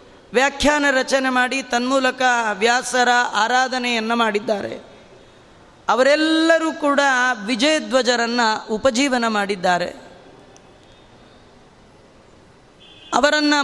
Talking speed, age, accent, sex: 55 wpm, 20-39, native, female